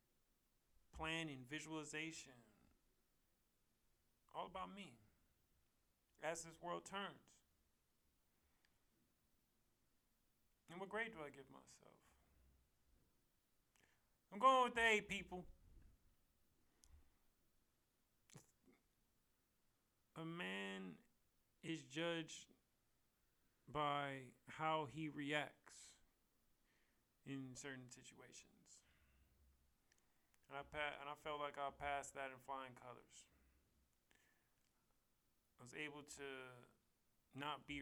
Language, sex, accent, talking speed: English, male, American, 80 wpm